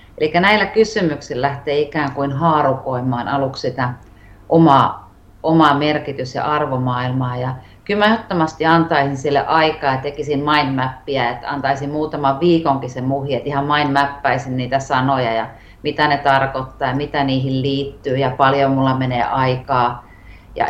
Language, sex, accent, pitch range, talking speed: Finnish, female, native, 135-175 Hz, 135 wpm